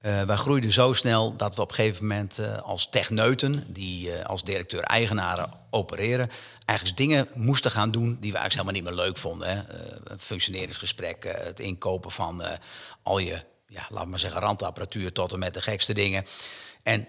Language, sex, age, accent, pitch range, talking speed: Dutch, male, 50-69, Dutch, 100-120 Hz, 185 wpm